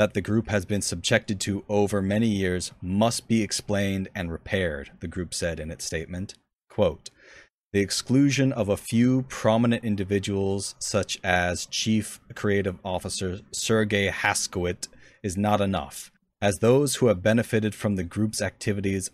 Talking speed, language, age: 150 wpm, English, 30-49